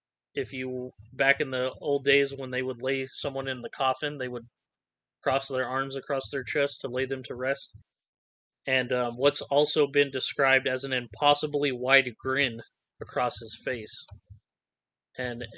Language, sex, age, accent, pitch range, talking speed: English, male, 20-39, American, 125-140 Hz, 165 wpm